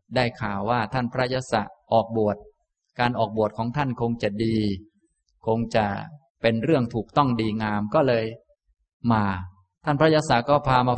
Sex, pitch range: male, 105-135 Hz